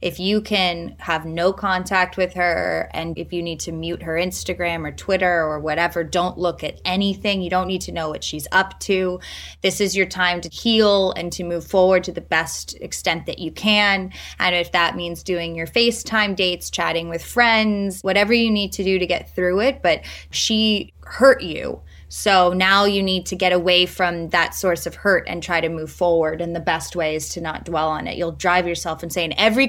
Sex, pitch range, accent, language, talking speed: female, 170-205 Hz, American, English, 215 wpm